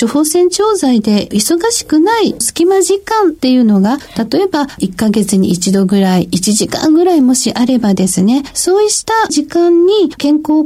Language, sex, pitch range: Japanese, female, 215-340 Hz